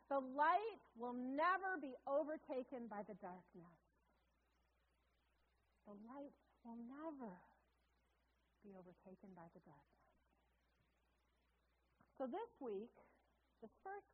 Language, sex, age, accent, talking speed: English, female, 40-59, American, 100 wpm